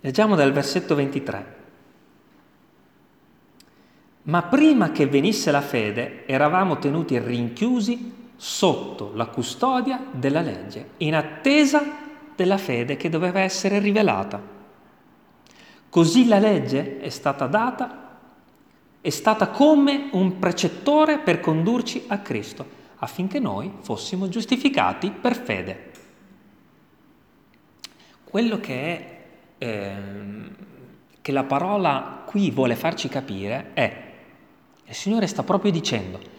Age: 40-59